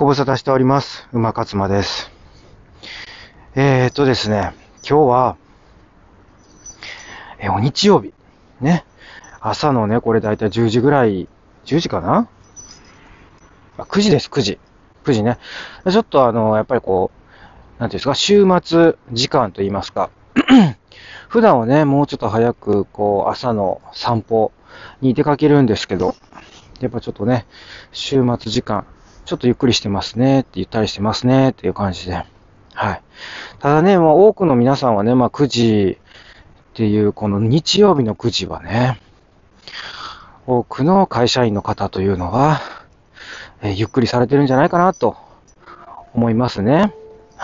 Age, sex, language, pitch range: 40-59, male, Japanese, 105-140 Hz